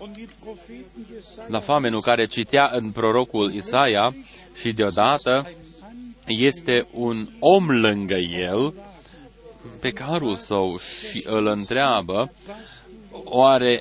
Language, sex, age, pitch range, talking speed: Romanian, male, 30-49, 110-140 Hz, 90 wpm